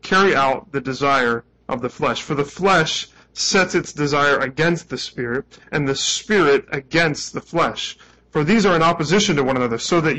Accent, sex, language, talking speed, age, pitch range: American, male, English, 190 wpm, 30-49, 125-170 Hz